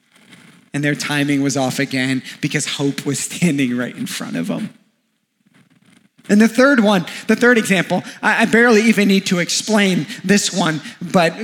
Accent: American